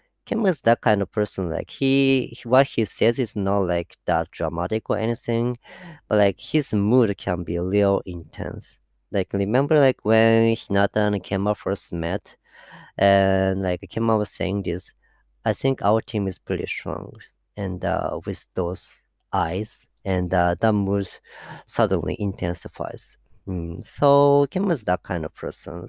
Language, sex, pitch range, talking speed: English, female, 95-120 Hz, 160 wpm